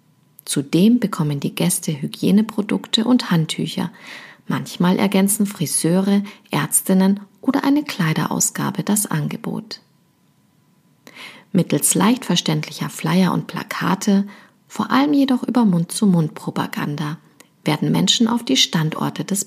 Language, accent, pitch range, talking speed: German, German, 170-225 Hz, 100 wpm